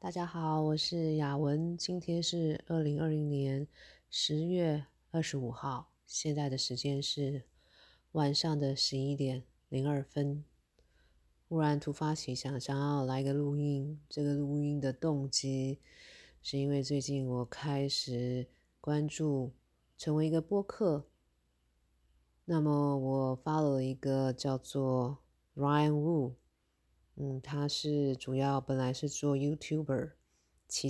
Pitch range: 130-150 Hz